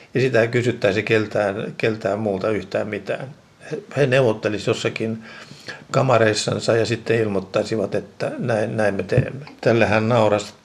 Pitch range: 105-115 Hz